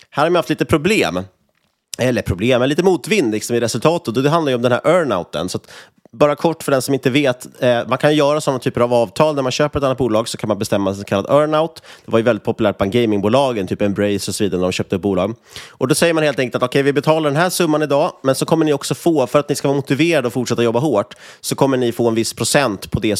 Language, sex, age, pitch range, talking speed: Swedish, male, 30-49, 110-145 Hz, 285 wpm